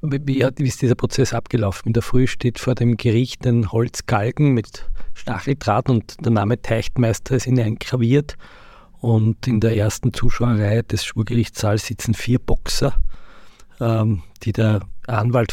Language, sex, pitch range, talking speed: German, male, 105-120 Hz, 140 wpm